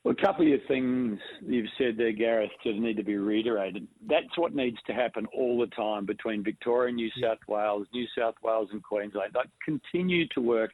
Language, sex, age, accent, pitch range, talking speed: English, male, 50-69, Australian, 105-125 Hz, 205 wpm